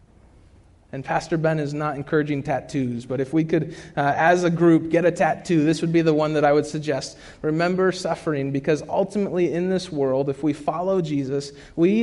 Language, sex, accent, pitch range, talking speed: English, male, American, 145-195 Hz, 195 wpm